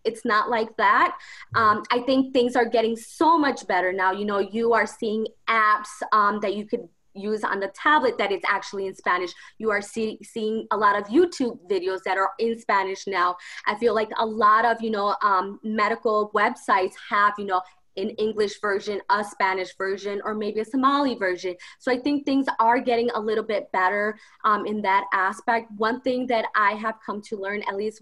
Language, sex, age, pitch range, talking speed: English, female, 20-39, 210-255 Hz, 205 wpm